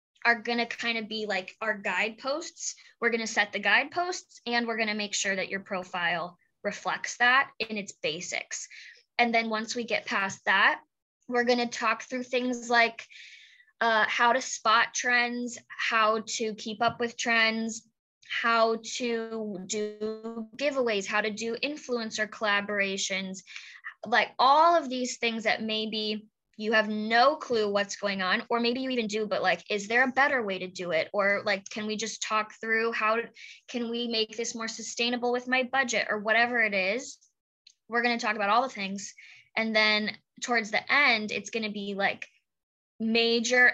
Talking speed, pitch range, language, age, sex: 180 wpm, 210-240 Hz, English, 10-29, female